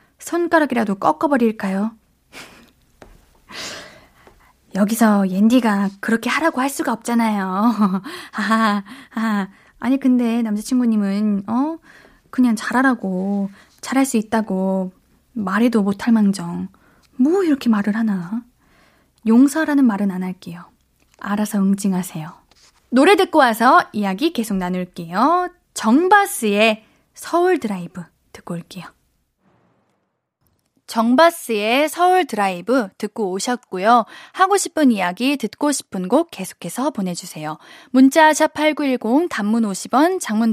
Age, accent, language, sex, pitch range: 20-39, native, Korean, female, 205-295 Hz